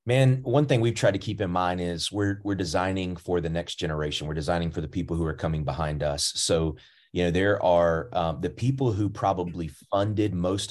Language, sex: English, male